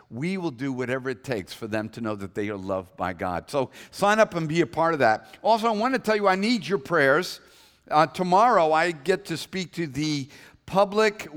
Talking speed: 230 wpm